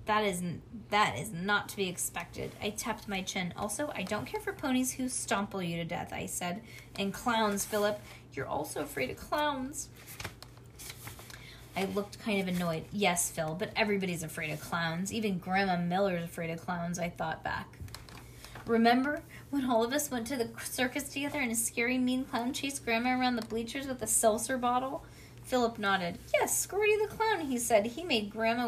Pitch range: 180-240 Hz